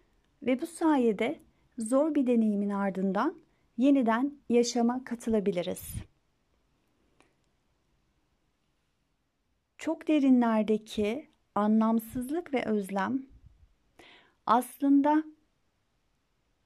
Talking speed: 60 wpm